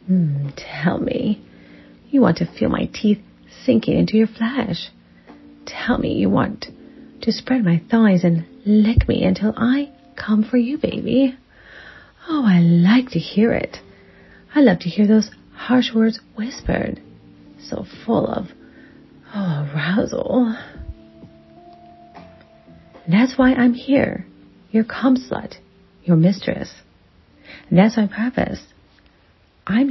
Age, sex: 40-59, female